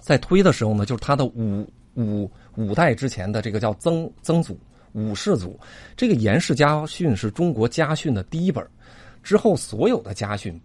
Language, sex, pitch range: Chinese, male, 110-165 Hz